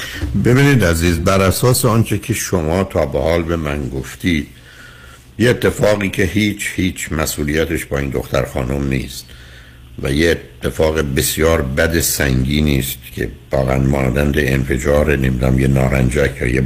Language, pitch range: Persian, 65-80 Hz